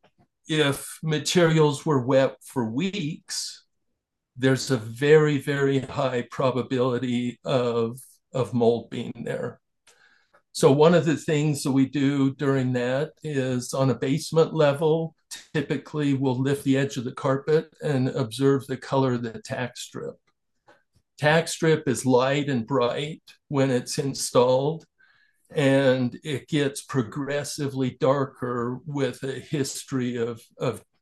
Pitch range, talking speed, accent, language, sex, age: 130-150 Hz, 130 wpm, American, English, male, 50-69